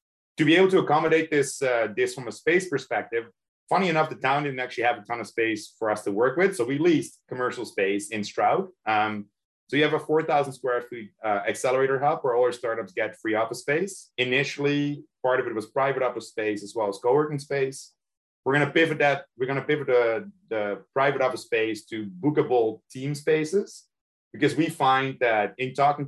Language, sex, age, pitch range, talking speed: English, male, 30-49, 110-150 Hz, 205 wpm